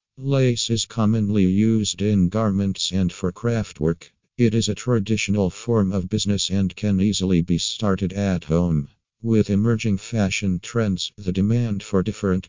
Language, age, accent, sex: Italian, 50-69, American, male